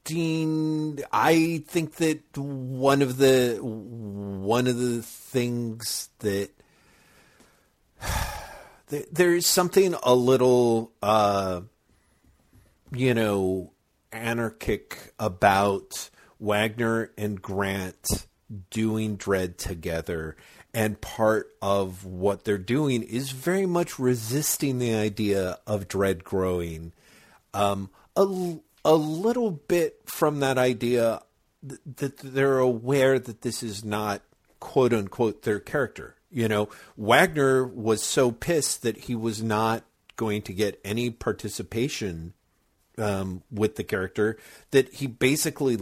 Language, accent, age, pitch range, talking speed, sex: English, American, 50-69, 105-135 Hz, 110 wpm, male